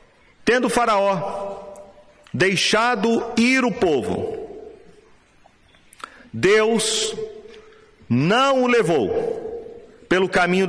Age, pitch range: 40-59, 140-225 Hz